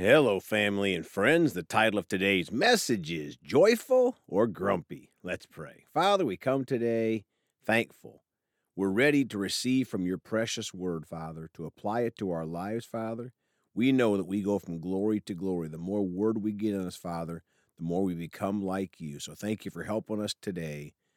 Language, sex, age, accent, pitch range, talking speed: English, male, 50-69, American, 90-130 Hz, 185 wpm